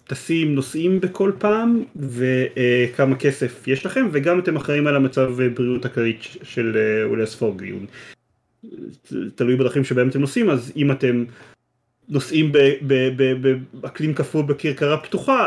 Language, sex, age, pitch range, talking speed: Hebrew, male, 30-49, 125-160 Hz, 130 wpm